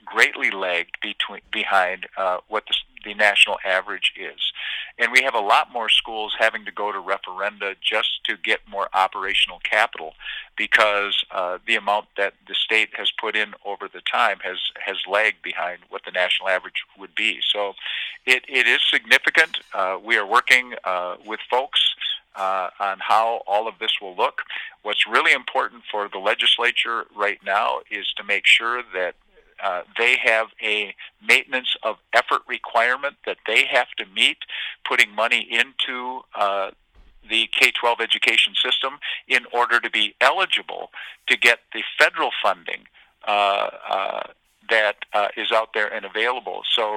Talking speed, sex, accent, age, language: 160 wpm, male, American, 50-69, English